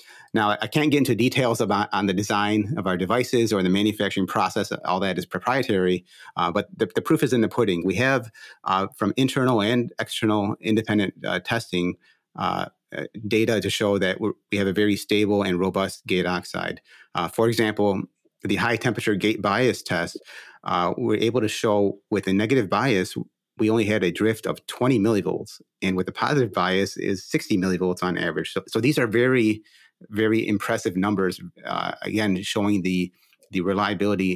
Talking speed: 185 wpm